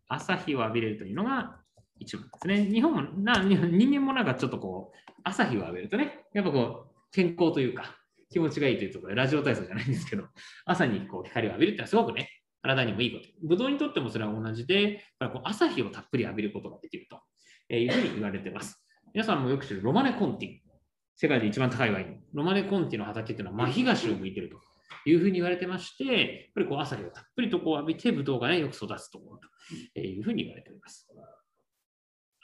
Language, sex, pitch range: Japanese, male, 130-215 Hz